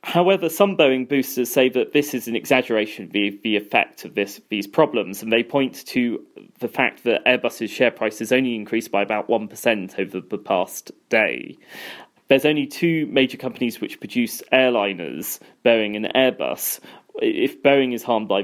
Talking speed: 170 wpm